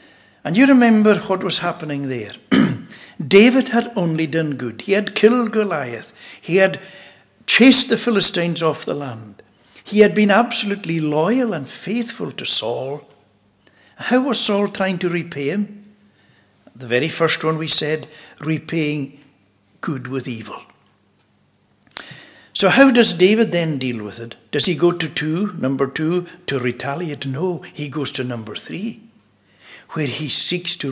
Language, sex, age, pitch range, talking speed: English, male, 60-79, 135-205 Hz, 150 wpm